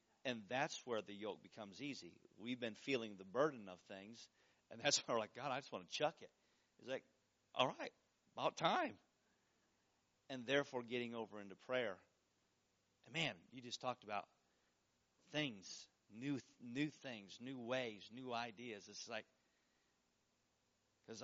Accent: American